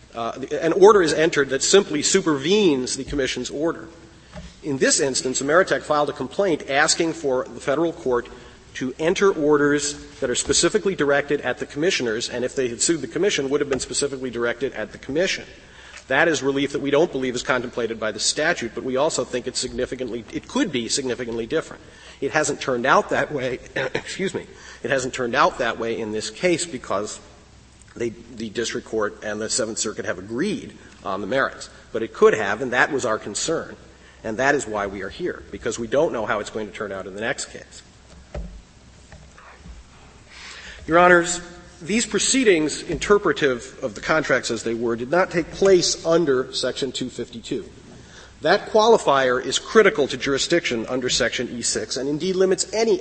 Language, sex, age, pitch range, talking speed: English, male, 40-59, 125-170 Hz, 185 wpm